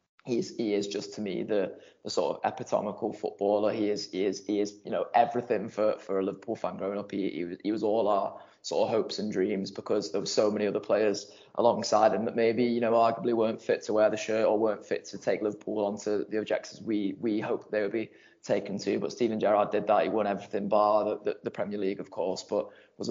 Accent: British